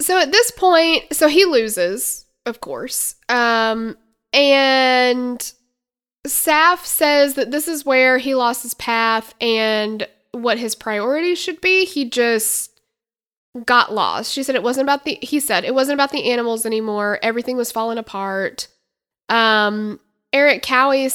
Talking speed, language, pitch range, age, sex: 150 wpm, English, 225-290 Hz, 20-39, female